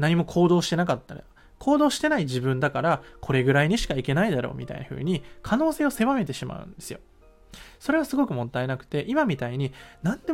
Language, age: Japanese, 20-39